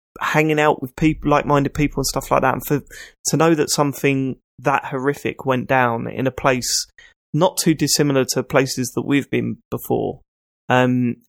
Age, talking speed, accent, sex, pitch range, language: 20-39, 175 wpm, British, male, 120-145 Hz, English